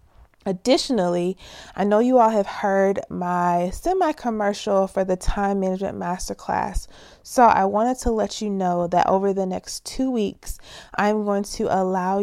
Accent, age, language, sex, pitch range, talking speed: American, 20-39, English, female, 175-200 Hz, 150 wpm